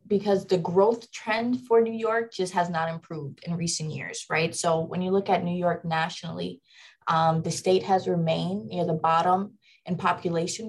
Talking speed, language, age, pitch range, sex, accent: 185 wpm, English, 20-39, 165-195 Hz, female, American